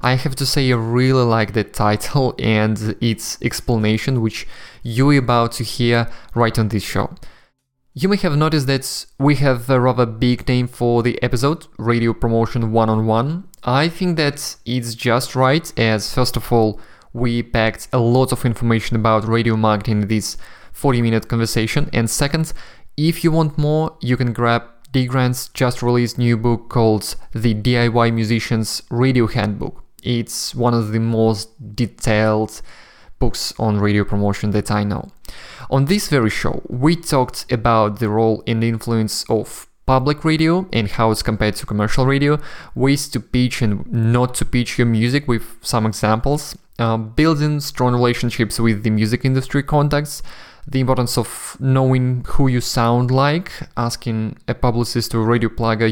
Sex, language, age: male, English, 20-39